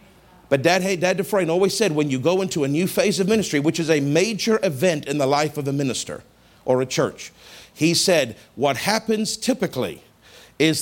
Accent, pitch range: American, 180-240 Hz